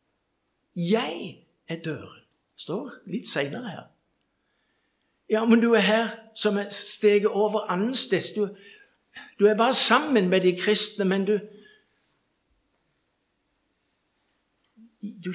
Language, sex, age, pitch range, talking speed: English, male, 60-79, 145-205 Hz, 105 wpm